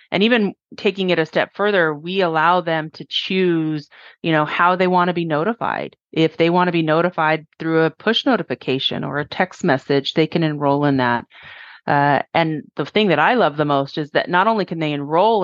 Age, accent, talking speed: 30-49, American, 215 wpm